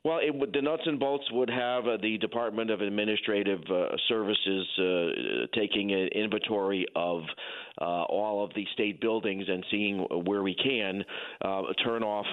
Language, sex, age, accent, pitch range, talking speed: English, male, 40-59, American, 95-110 Hz, 170 wpm